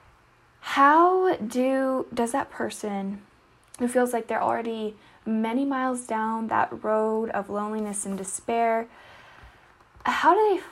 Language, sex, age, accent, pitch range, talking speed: English, female, 10-29, American, 200-250 Hz, 120 wpm